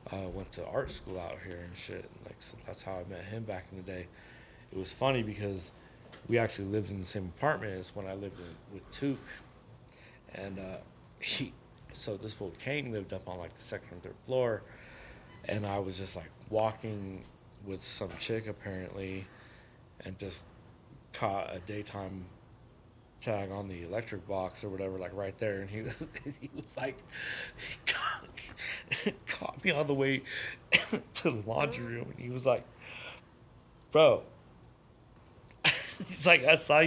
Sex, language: male, English